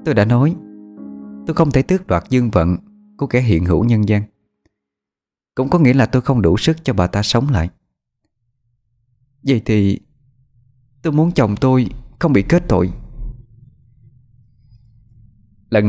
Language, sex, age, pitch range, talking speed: Vietnamese, male, 20-39, 95-140 Hz, 150 wpm